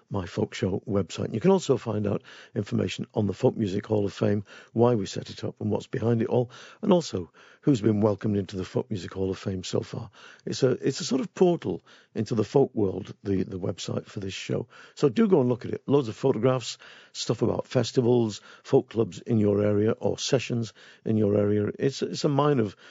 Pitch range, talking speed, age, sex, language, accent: 105-130 Hz, 225 wpm, 50-69, male, English, British